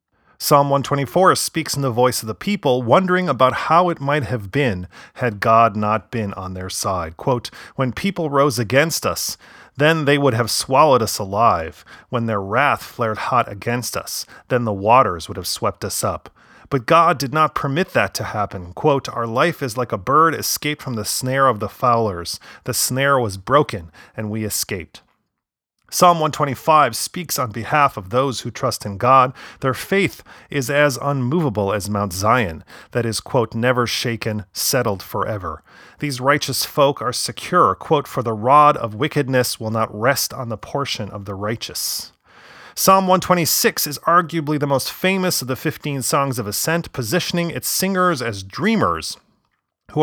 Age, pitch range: 30-49, 110-150 Hz